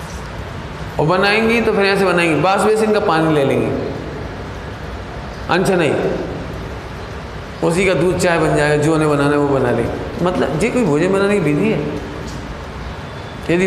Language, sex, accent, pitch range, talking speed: Hindi, male, native, 115-195 Hz, 160 wpm